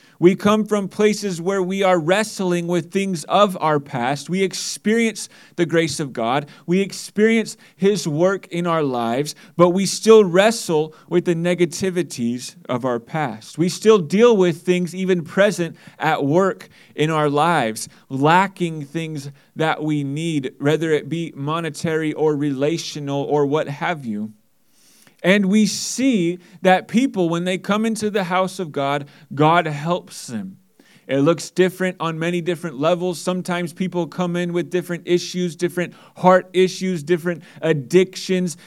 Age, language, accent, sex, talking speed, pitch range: 30-49, English, American, male, 150 wpm, 155-190 Hz